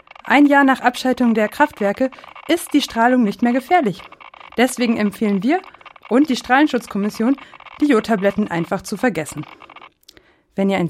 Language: German